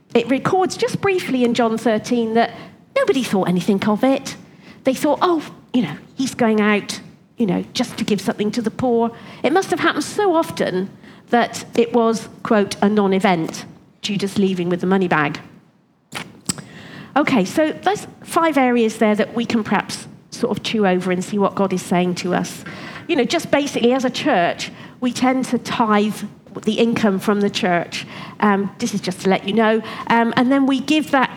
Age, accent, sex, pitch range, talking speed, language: 40-59, British, female, 200-245 Hz, 195 wpm, English